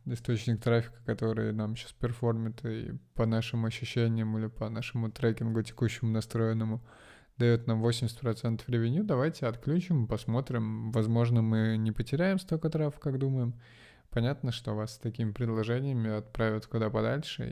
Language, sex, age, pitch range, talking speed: Russian, male, 20-39, 110-125 Hz, 135 wpm